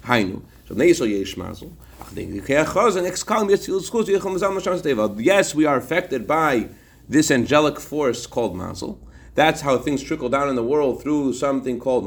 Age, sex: 40-59, male